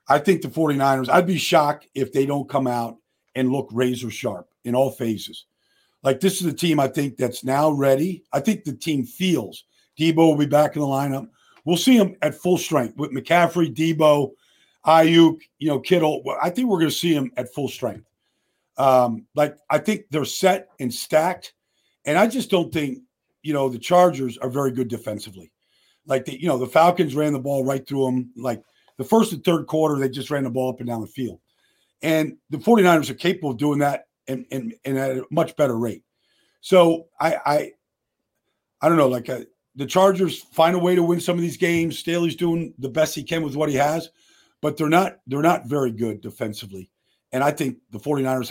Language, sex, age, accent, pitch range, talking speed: English, male, 50-69, American, 130-165 Hz, 210 wpm